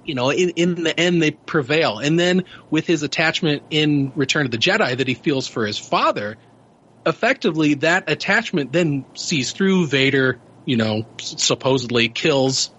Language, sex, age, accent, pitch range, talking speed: English, male, 30-49, American, 135-165 Hz, 165 wpm